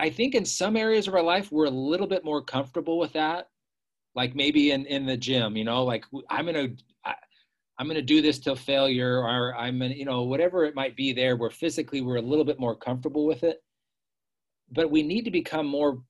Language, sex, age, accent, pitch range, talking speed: English, male, 40-59, American, 125-150 Hz, 230 wpm